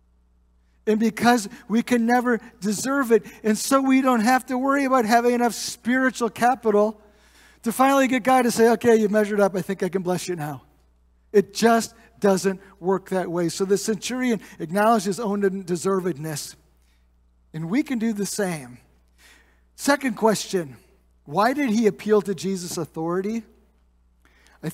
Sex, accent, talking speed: male, American, 160 wpm